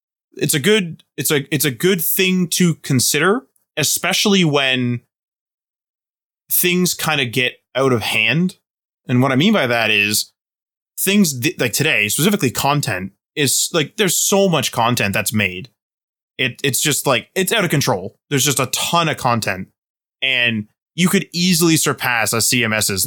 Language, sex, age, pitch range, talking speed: English, male, 20-39, 115-155 Hz, 160 wpm